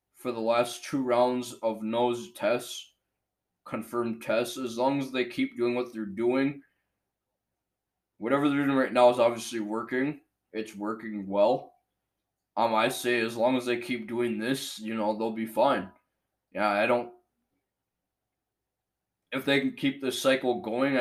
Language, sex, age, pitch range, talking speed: English, male, 20-39, 100-120 Hz, 155 wpm